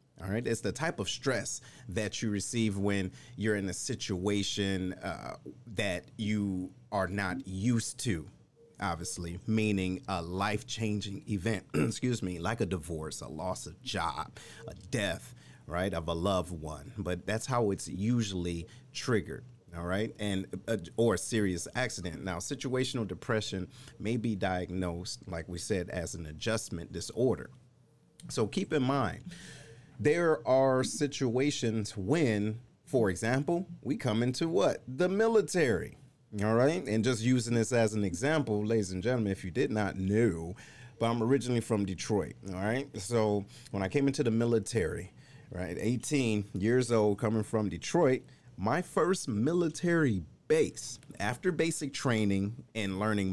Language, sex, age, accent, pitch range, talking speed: English, male, 40-59, American, 95-125 Hz, 150 wpm